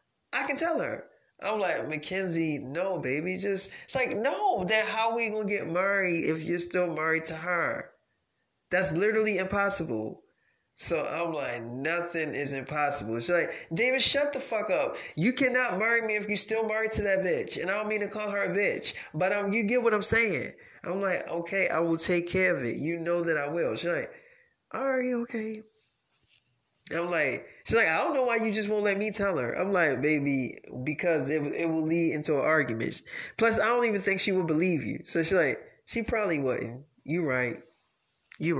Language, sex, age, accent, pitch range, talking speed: English, male, 20-39, American, 150-215 Hz, 205 wpm